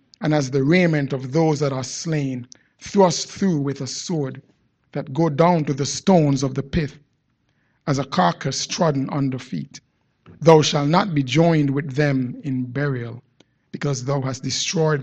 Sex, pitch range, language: male, 125-155 Hz, English